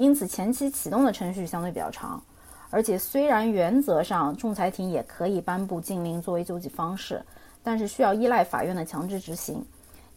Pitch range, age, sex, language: 180-255 Hz, 30-49, female, Chinese